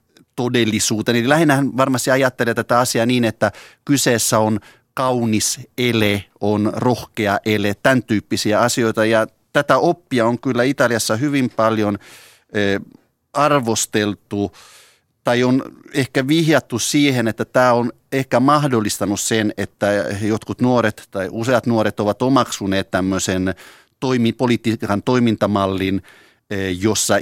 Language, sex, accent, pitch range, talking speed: Finnish, male, native, 95-120 Hz, 110 wpm